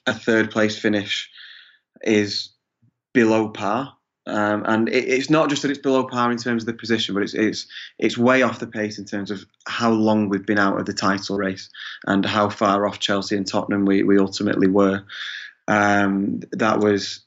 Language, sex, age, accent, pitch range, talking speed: English, male, 20-39, British, 100-115 Hz, 195 wpm